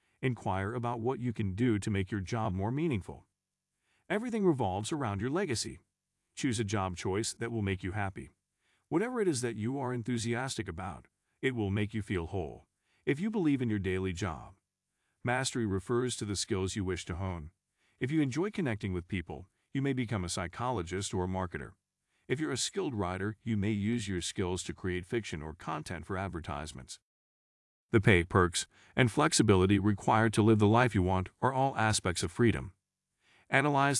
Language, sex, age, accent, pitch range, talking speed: English, male, 40-59, American, 90-115 Hz, 185 wpm